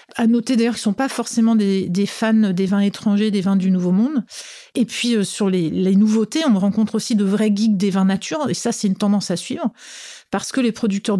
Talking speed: 245 wpm